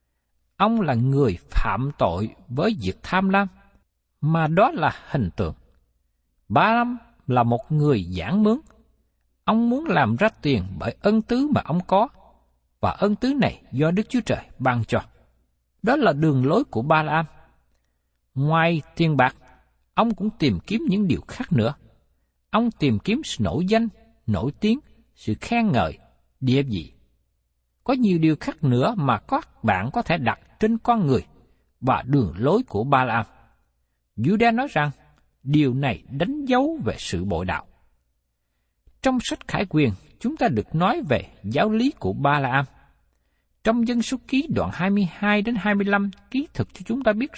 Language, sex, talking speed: Vietnamese, male, 165 wpm